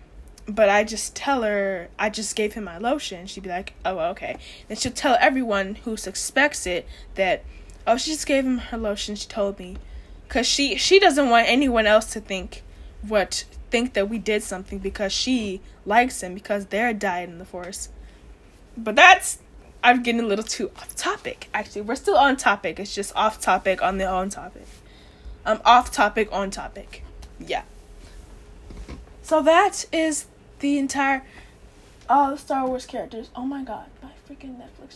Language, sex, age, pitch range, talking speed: English, female, 10-29, 205-270 Hz, 170 wpm